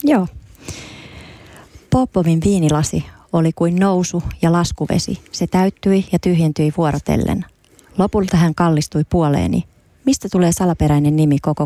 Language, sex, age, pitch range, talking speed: Finnish, female, 30-49, 150-180 Hz, 115 wpm